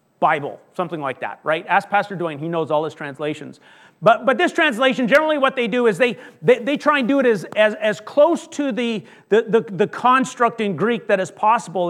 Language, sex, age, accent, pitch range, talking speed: English, male, 40-59, American, 200-265 Hz, 220 wpm